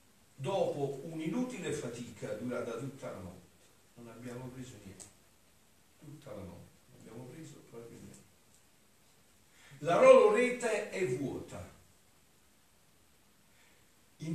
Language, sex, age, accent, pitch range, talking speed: Italian, male, 40-59, native, 110-175 Hz, 105 wpm